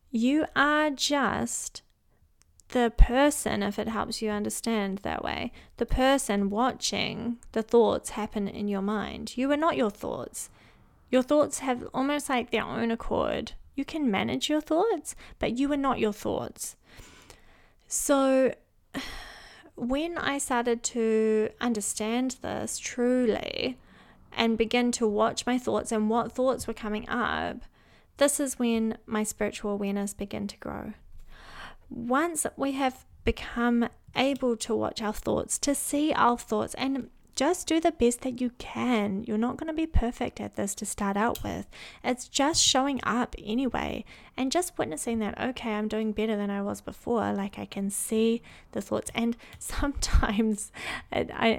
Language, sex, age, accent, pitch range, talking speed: English, female, 30-49, Australian, 215-265 Hz, 155 wpm